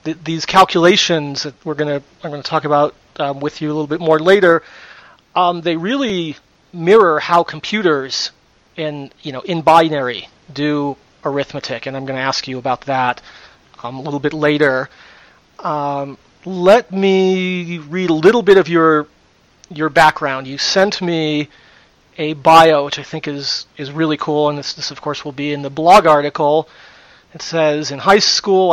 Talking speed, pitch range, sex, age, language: 170 wpm, 145-170 Hz, male, 40-59, English